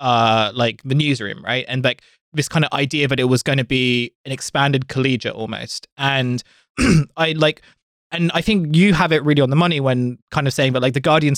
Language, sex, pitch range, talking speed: English, male, 125-150 Hz, 220 wpm